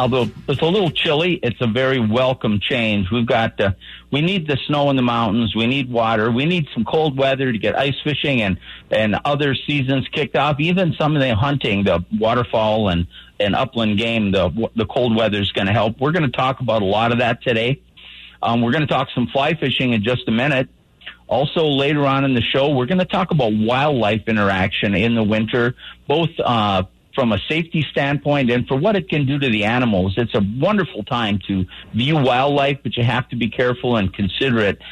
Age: 50-69